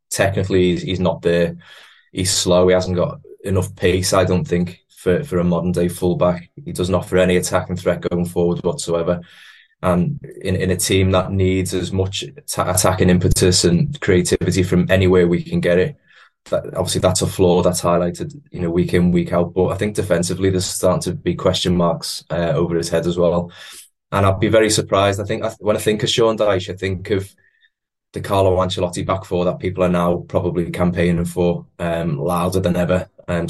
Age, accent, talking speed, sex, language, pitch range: 20-39, British, 205 wpm, male, English, 85-95 Hz